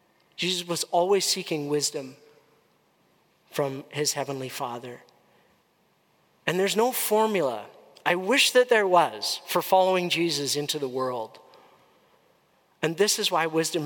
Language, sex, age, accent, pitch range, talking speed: English, male, 40-59, American, 145-175 Hz, 125 wpm